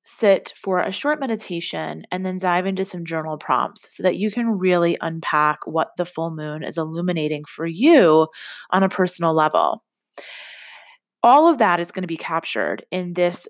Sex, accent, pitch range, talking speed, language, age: female, American, 165-205 Hz, 180 wpm, English, 20-39